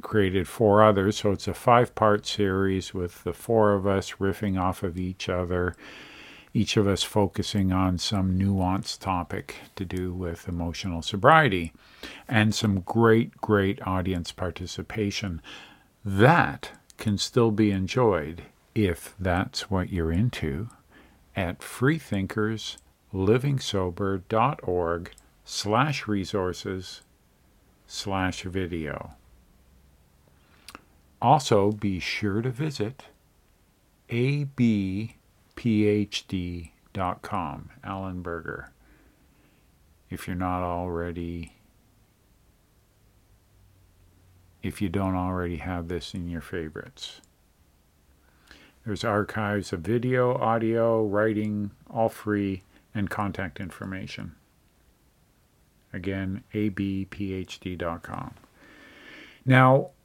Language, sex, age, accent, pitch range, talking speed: English, male, 50-69, American, 90-110 Hz, 85 wpm